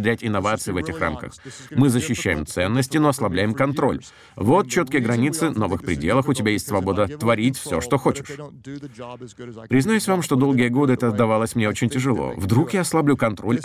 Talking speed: 165 wpm